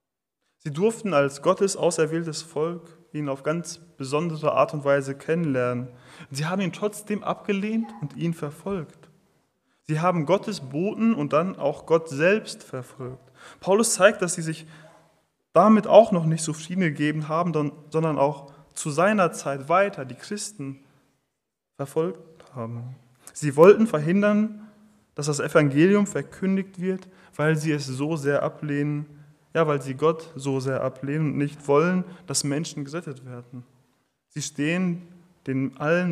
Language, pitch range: German, 140-175 Hz